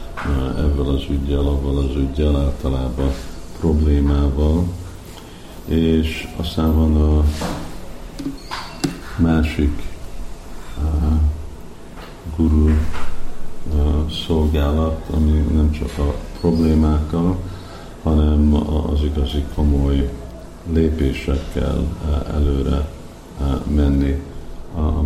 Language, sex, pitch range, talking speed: Hungarian, male, 70-85 Hz, 65 wpm